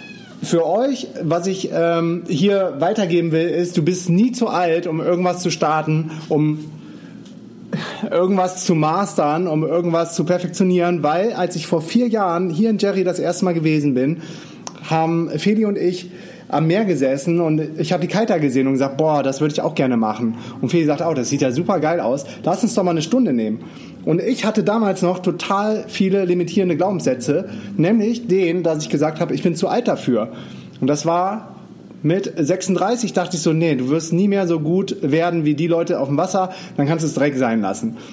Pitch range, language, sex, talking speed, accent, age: 155-185 Hz, German, male, 205 wpm, German, 30-49